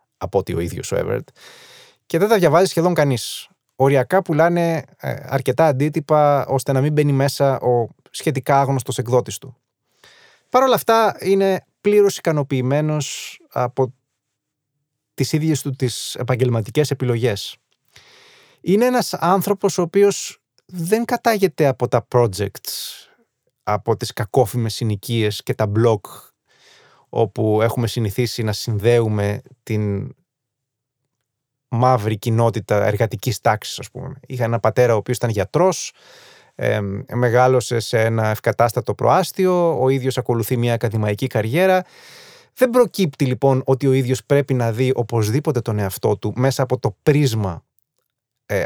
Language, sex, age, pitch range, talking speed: Greek, male, 20-39, 115-150 Hz, 130 wpm